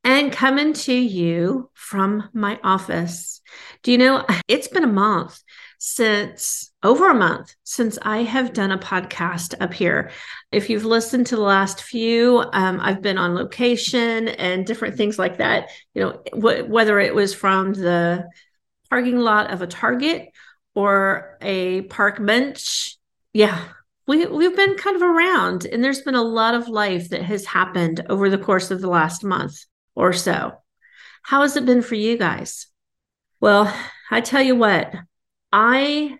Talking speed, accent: 160 wpm, American